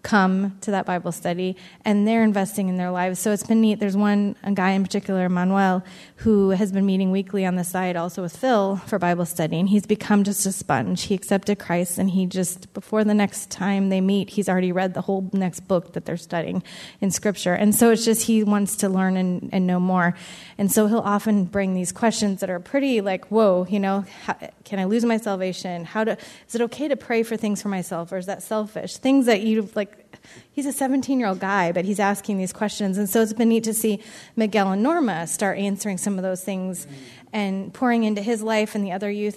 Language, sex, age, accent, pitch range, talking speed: English, female, 20-39, American, 190-220 Hz, 230 wpm